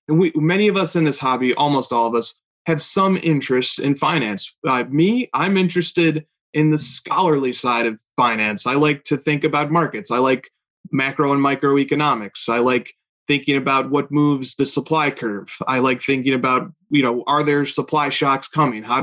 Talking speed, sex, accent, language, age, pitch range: 185 wpm, male, American, English, 30-49, 130-155 Hz